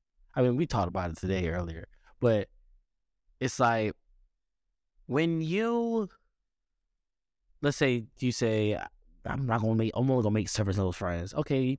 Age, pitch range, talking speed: 20-39, 110-150 Hz, 160 wpm